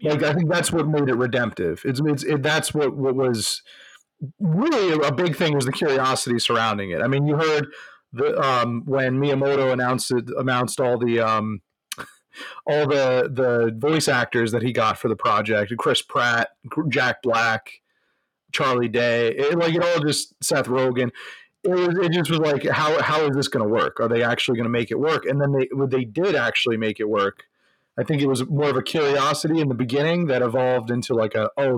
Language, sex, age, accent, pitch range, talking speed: English, male, 30-49, American, 120-150 Hz, 205 wpm